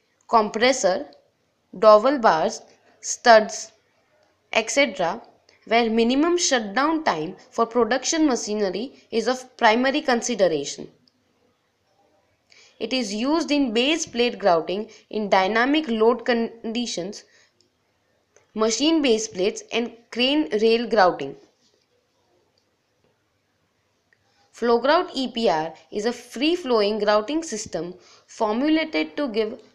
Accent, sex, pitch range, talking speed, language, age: Indian, female, 215-275 Hz, 95 wpm, English, 20-39